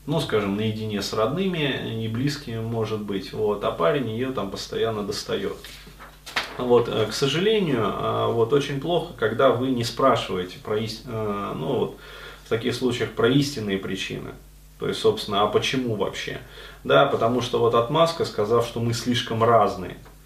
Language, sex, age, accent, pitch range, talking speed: Russian, male, 30-49, native, 105-140 Hz, 150 wpm